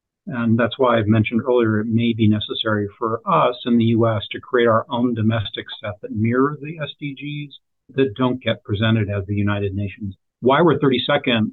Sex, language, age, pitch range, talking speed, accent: male, English, 40-59, 110-125 Hz, 185 wpm, American